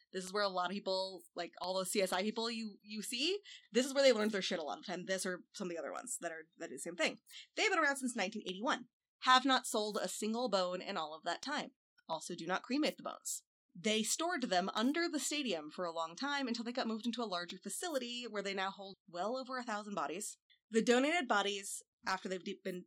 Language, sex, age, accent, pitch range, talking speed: English, female, 20-39, American, 190-250 Hz, 250 wpm